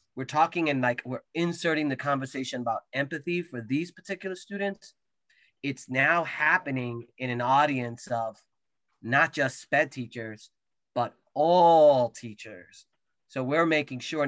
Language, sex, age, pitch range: English, male, 30-49, 125-145 Hz